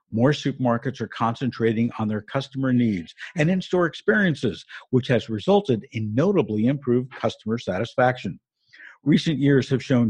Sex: male